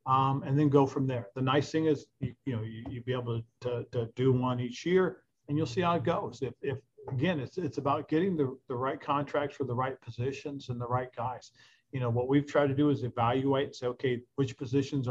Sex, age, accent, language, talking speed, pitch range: male, 50-69, American, English, 250 wpm, 120-140 Hz